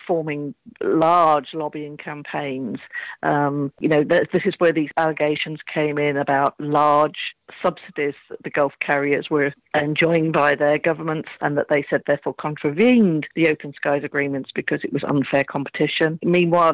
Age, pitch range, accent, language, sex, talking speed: 40-59, 150-175 Hz, British, English, female, 150 wpm